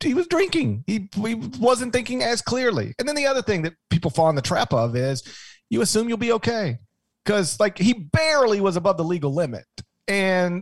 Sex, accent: male, American